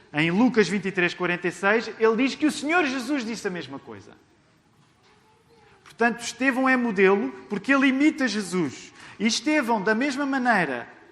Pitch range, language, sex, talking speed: 160-230 Hz, Portuguese, male, 145 wpm